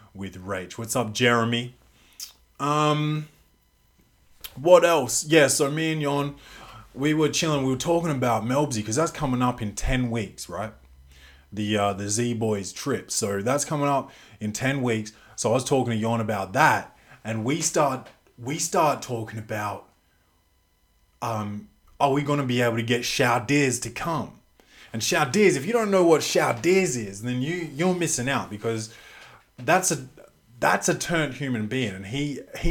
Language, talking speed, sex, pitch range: English, 170 wpm, male, 110-150 Hz